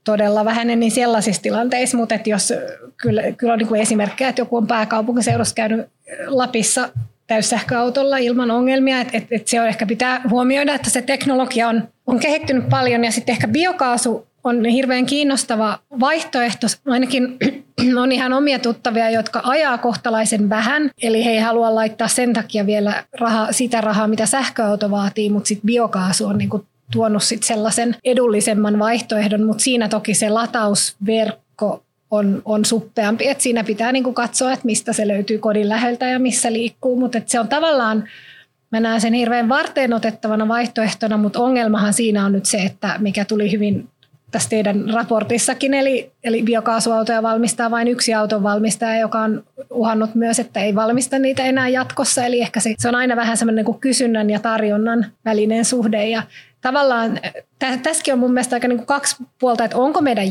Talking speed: 170 wpm